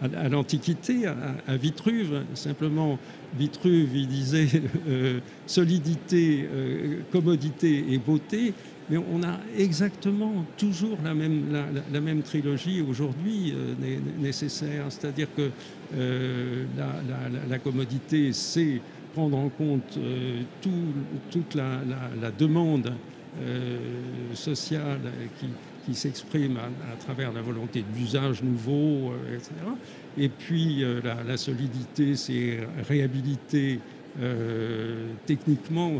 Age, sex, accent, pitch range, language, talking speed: 60-79, male, French, 125-155 Hz, French, 110 wpm